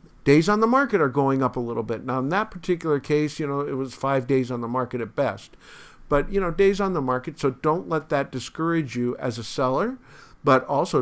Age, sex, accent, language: 50-69, male, American, English